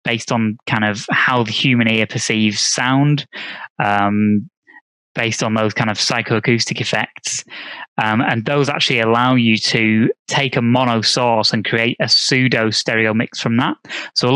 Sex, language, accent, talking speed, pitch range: male, English, British, 165 wpm, 110-130 Hz